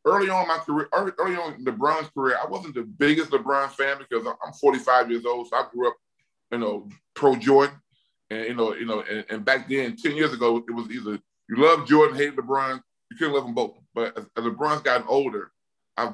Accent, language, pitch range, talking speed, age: American, English, 120-145 Hz, 225 wpm, 20-39